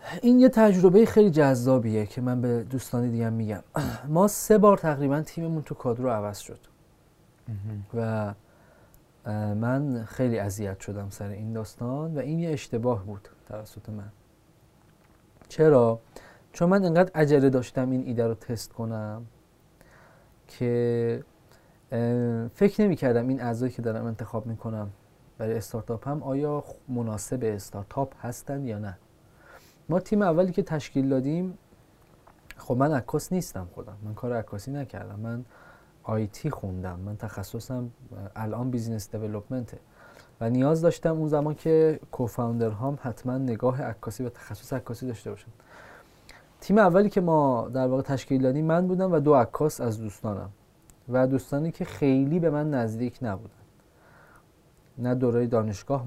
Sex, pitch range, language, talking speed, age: male, 110-145 Hz, Persian, 140 wpm, 30-49